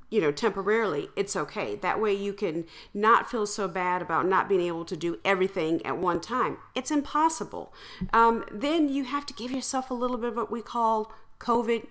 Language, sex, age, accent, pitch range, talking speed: English, female, 40-59, American, 185-245 Hz, 200 wpm